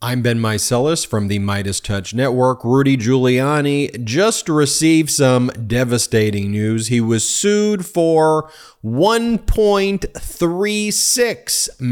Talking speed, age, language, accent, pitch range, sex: 100 wpm, 30-49, English, American, 110-140 Hz, male